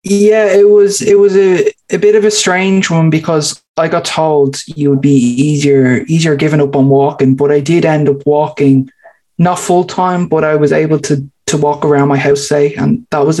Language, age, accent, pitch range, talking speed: English, 20-39, Irish, 145-175 Hz, 215 wpm